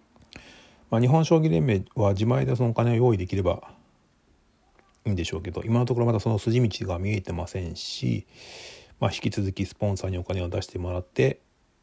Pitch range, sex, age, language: 90-110 Hz, male, 40-59, Japanese